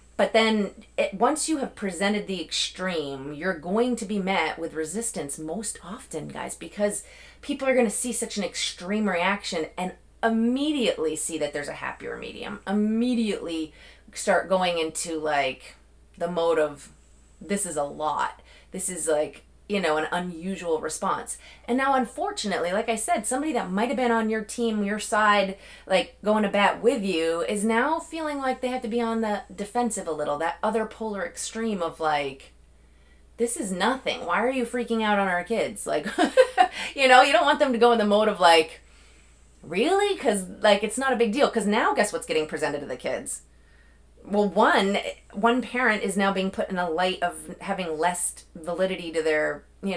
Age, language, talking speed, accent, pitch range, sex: 30-49, English, 190 wpm, American, 160-230 Hz, female